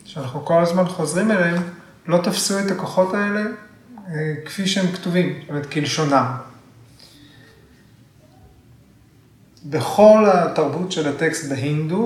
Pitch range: 135-175 Hz